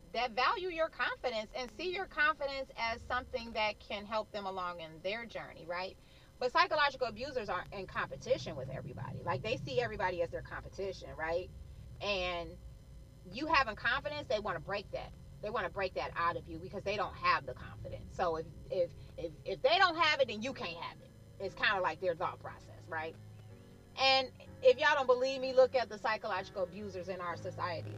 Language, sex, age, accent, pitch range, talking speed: English, female, 30-49, American, 175-255 Hz, 200 wpm